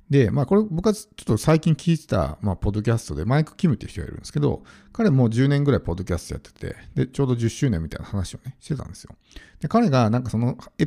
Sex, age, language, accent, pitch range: male, 50-69, Japanese, native, 100-170 Hz